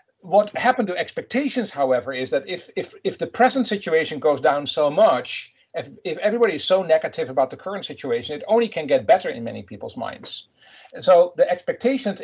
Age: 50-69